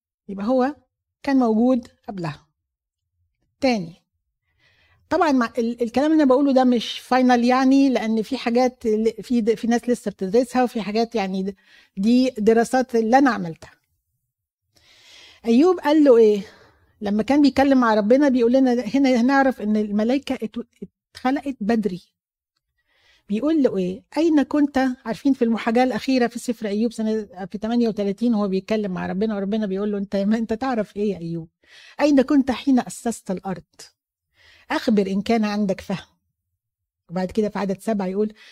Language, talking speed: Arabic, 145 wpm